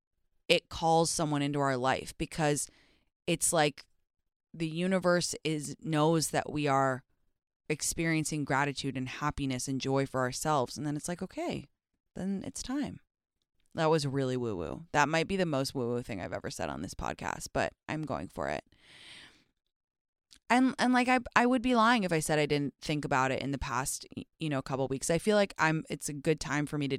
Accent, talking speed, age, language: American, 200 wpm, 20-39, English